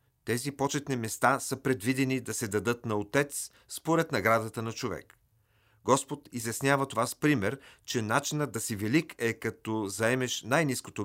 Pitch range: 110-135 Hz